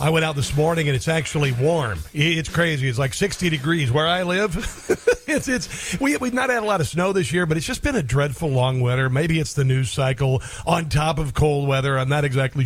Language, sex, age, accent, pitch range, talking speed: English, male, 50-69, American, 135-160 Hz, 240 wpm